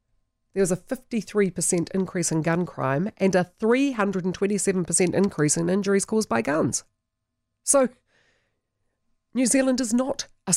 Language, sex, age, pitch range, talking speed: English, female, 40-59, 145-195 Hz, 130 wpm